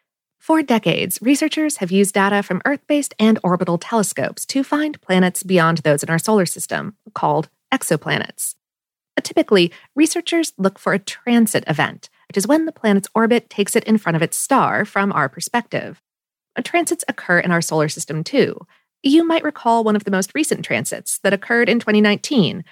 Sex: female